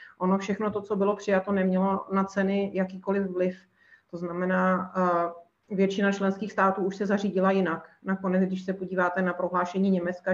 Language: Czech